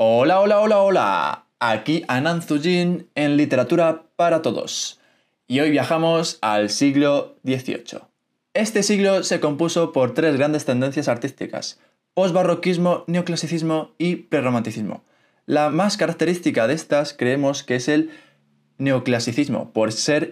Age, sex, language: 20-39, male, Spanish